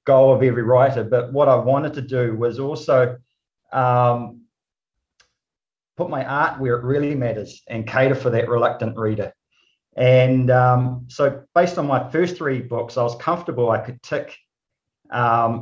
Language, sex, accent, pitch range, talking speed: English, male, Australian, 120-140 Hz, 160 wpm